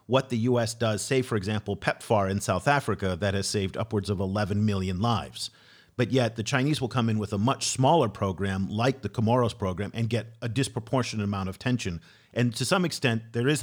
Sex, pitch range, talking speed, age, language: male, 100-125 Hz, 210 wpm, 50-69, English